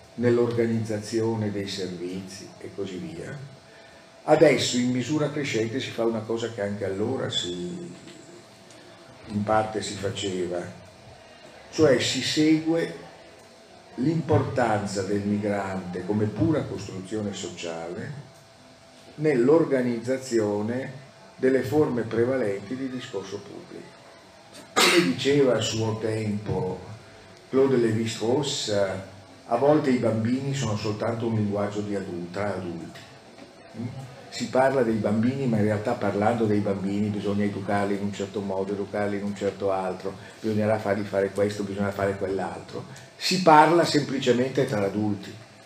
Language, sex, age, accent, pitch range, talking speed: Italian, male, 50-69, native, 100-125 Hz, 115 wpm